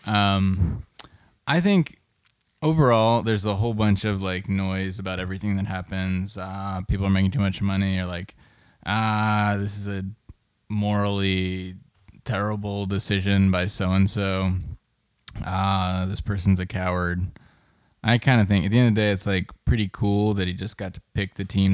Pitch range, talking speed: 90-105 Hz, 165 wpm